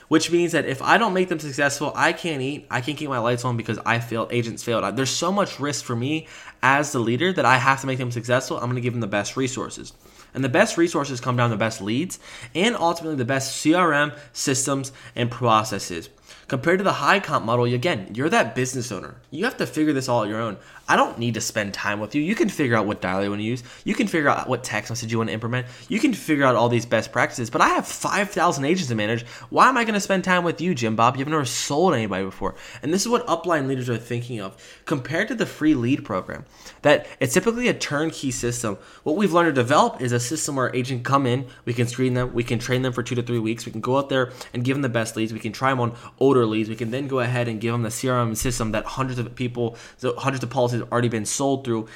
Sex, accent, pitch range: male, American, 115-140 Hz